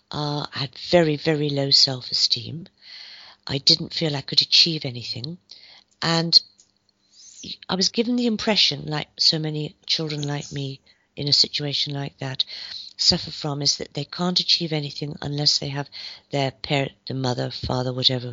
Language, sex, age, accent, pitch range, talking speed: English, female, 50-69, British, 140-180 Hz, 155 wpm